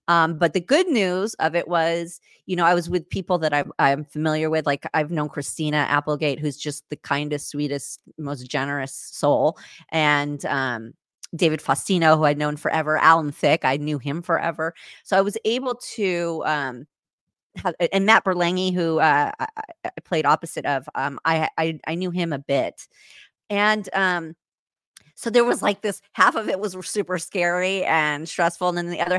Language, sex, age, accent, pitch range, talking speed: English, female, 30-49, American, 145-185 Hz, 185 wpm